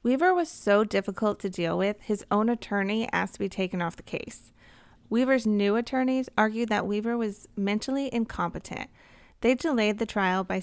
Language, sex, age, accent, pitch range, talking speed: English, female, 30-49, American, 185-235 Hz, 175 wpm